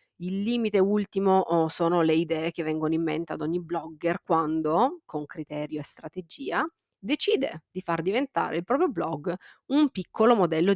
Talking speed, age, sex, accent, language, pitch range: 155 wpm, 30-49, female, native, Italian, 165-205 Hz